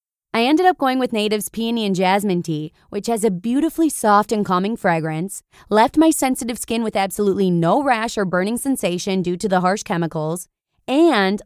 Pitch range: 185-235 Hz